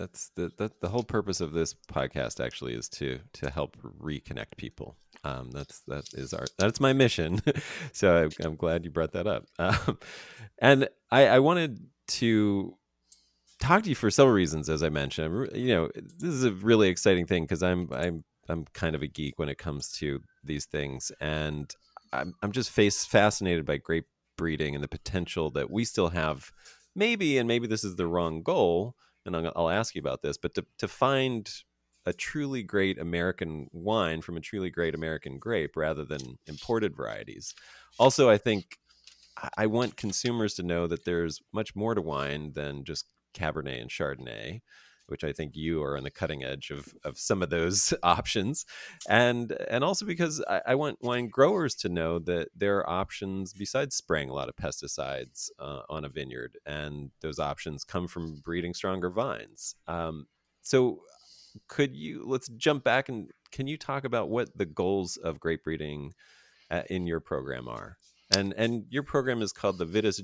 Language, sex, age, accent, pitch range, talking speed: English, male, 30-49, American, 75-110 Hz, 185 wpm